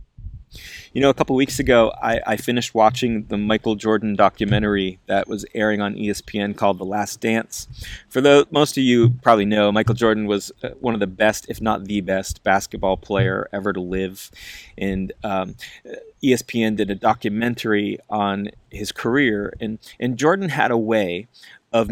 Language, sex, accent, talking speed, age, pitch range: English, male, American, 170 wpm, 30-49, 105-130 Hz